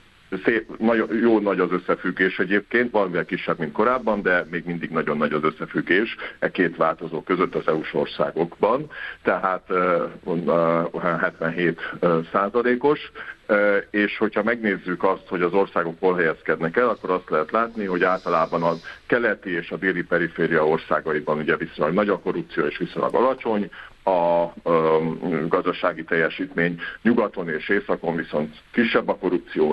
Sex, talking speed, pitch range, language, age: male, 145 wpm, 85-110 Hz, Hungarian, 60-79